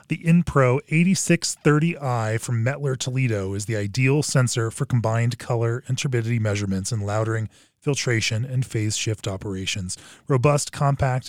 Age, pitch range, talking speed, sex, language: 20-39, 105-140 Hz, 135 wpm, male, English